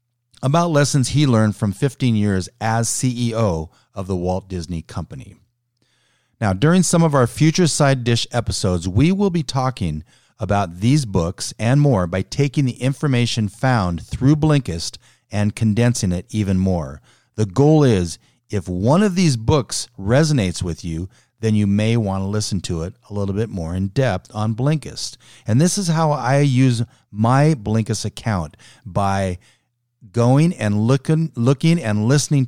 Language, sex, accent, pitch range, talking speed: English, male, American, 95-130 Hz, 160 wpm